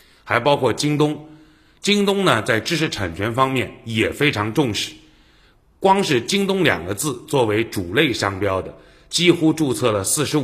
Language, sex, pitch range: Chinese, male, 115-160 Hz